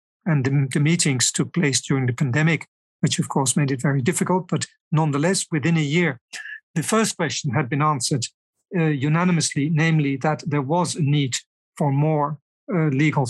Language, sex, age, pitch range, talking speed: English, male, 50-69, 145-180 Hz, 170 wpm